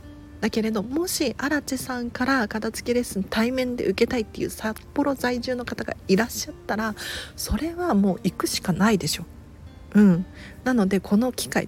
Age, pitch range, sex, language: 40-59, 170-225 Hz, female, Japanese